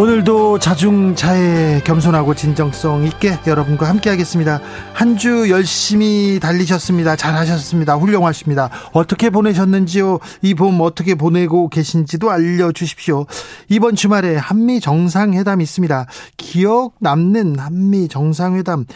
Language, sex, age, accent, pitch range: Korean, male, 40-59, native, 145-190 Hz